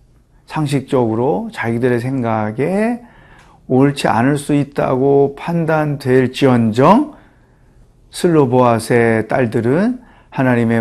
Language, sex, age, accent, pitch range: Korean, male, 40-59, native, 125-160 Hz